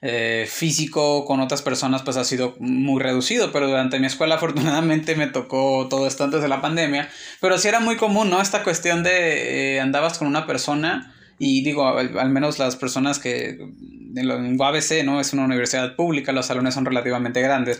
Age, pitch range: 20-39, 130-165 Hz